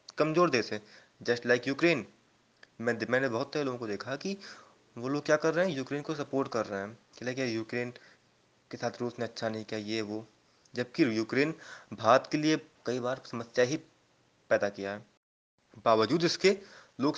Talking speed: 190 wpm